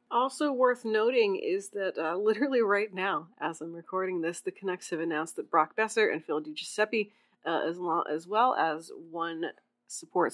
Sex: female